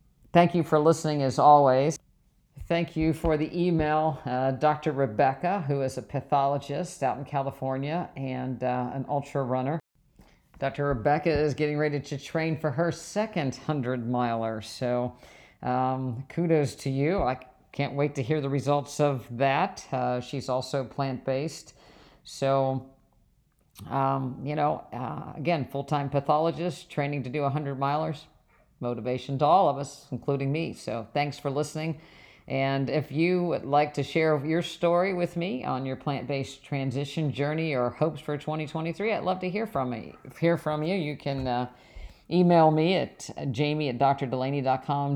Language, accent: English, American